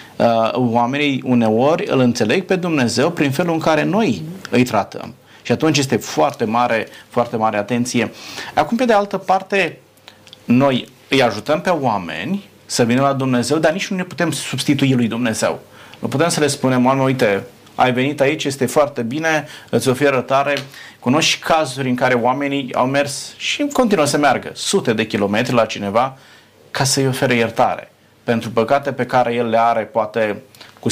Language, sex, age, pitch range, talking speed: Romanian, male, 30-49, 110-140 Hz, 170 wpm